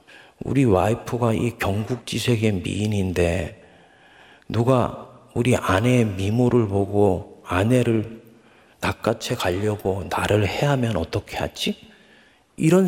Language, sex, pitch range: Korean, male, 95-125 Hz